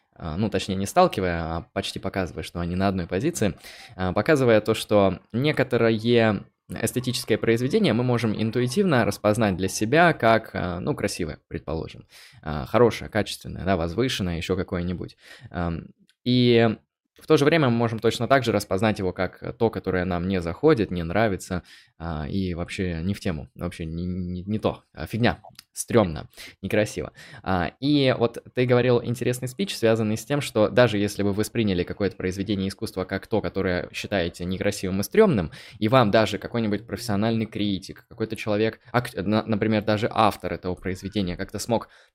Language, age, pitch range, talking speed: Russian, 20-39, 95-115 Hz, 150 wpm